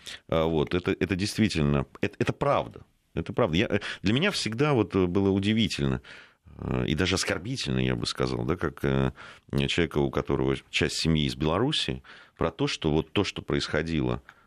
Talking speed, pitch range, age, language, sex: 160 wpm, 70-105 Hz, 40-59, Russian, male